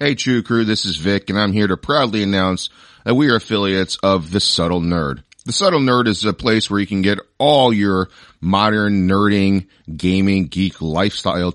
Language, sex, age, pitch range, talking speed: English, male, 40-59, 90-110 Hz, 190 wpm